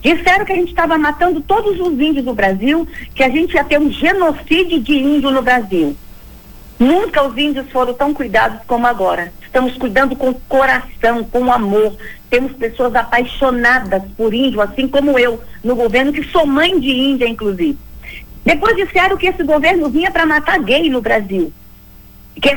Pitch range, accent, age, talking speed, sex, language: 250-330 Hz, Brazilian, 50-69, 170 wpm, female, Portuguese